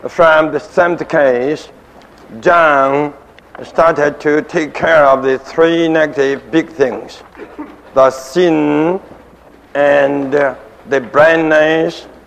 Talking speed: 100 wpm